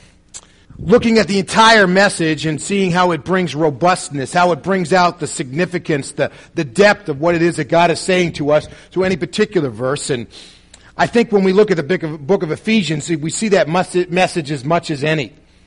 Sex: male